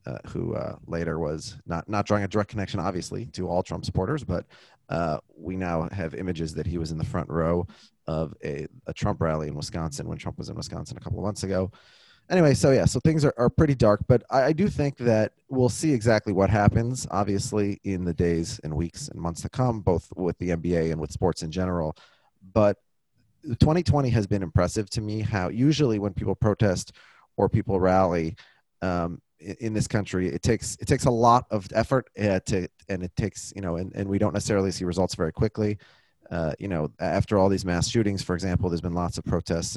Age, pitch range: 30-49, 85-110 Hz